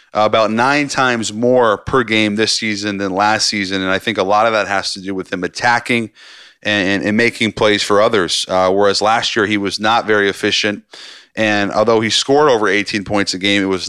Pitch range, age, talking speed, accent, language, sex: 100-115 Hz, 30-49, 215 wpm, American, English, male